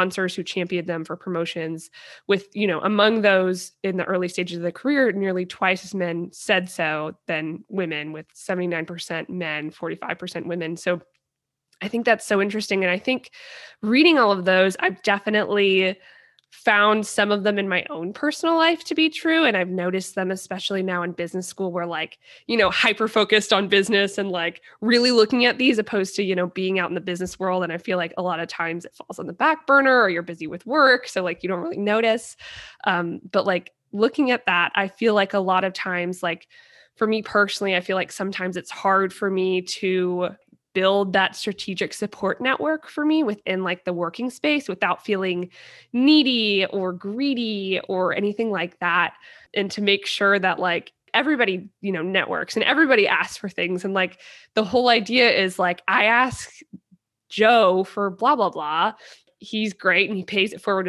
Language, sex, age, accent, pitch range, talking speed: English, female, 20-39, American, 180-215 Hz, 195 wpm